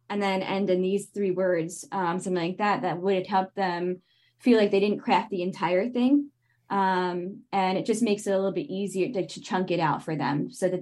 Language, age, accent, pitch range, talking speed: English, 10-29, American, 180-215 Hz, 235 wpm